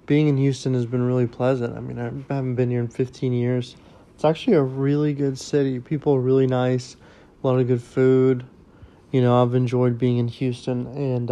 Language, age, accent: English, 20-39, American